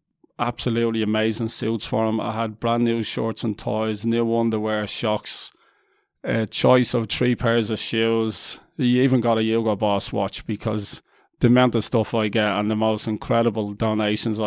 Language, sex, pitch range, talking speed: English, male, 110-120 Hz, 170 wpm